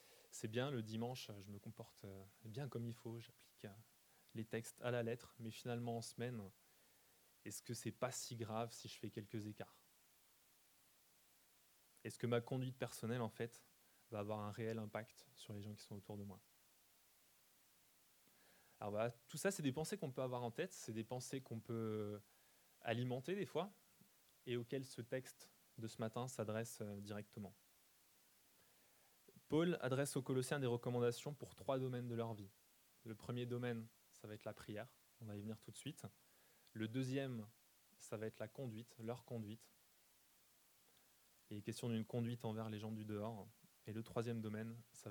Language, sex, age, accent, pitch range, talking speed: French, male, 20-39, French, 110-130 Hz, 175 wpm